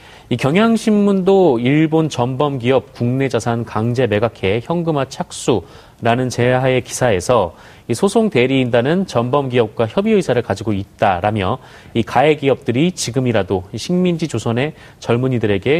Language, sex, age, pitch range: Korean, male, 30-49, 110-155 Hz